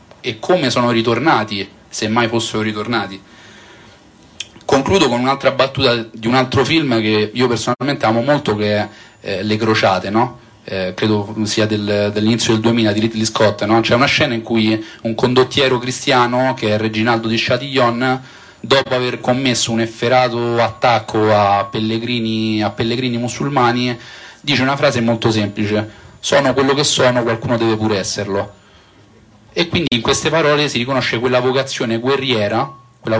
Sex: male